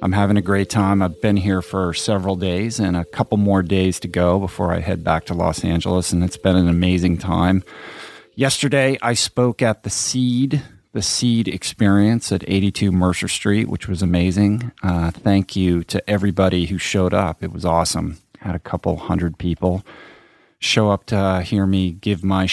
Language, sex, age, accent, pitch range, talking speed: English, male, 30-49, American, 85-100 Hz, 185 wpm